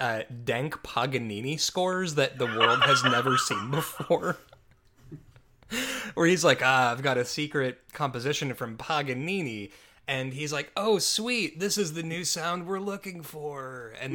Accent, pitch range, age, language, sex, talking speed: American, 125-195 Hz, 20-39, English, male, 155 wpm